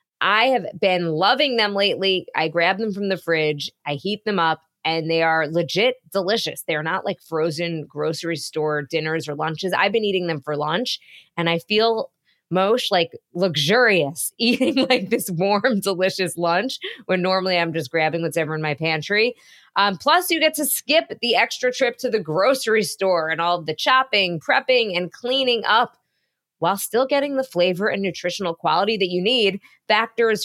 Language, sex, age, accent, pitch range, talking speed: English, female, 20-39, American, 165-225 Hz, 180 wpm